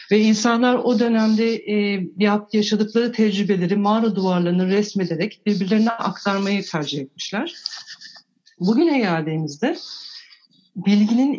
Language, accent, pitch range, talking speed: Turkish, native, 170-220 Hz, 90 wpm